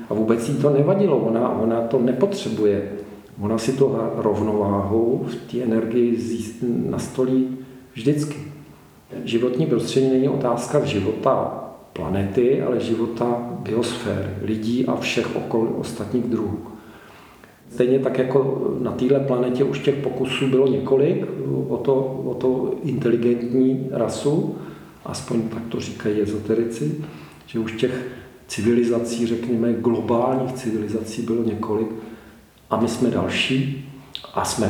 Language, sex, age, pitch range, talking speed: Czech, male, 50-69, 110-130 Hz, 120 wpm